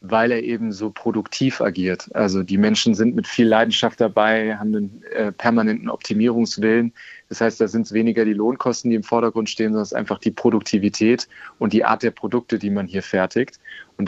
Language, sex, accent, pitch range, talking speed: German, male, German, 105-120 Hz, 200 wpm